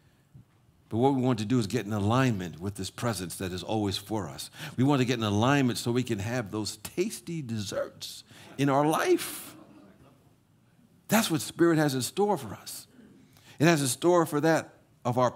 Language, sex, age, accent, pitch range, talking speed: English, male, 60-79, American, 115-145 Hz, 195 wpm